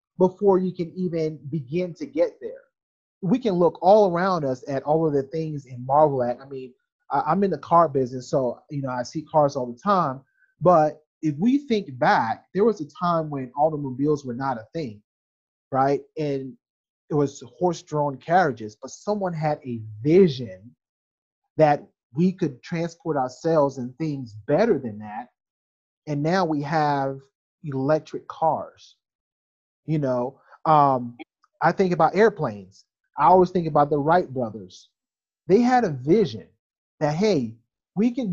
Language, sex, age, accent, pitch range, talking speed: English, male, 30-49, American, 135-175 Hz, 160 wpm